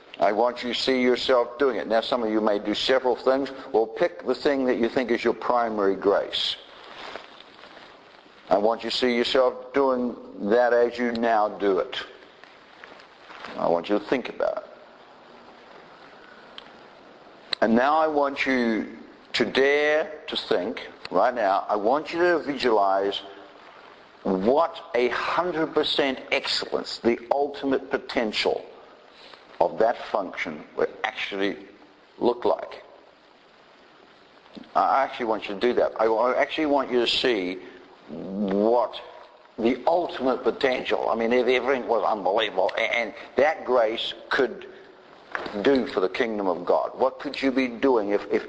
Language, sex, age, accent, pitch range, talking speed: English, male, 60-79, American, 115-145 Hz, 145 wpm